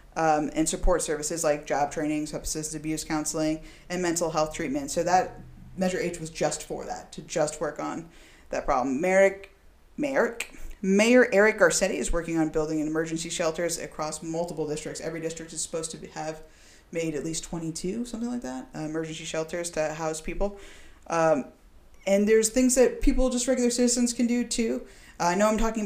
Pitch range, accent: 160-195 Hz, American